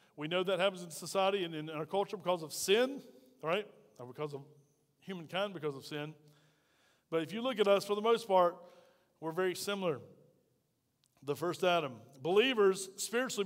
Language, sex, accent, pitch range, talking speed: English, male, American, 175-220 Hz, 175 wpm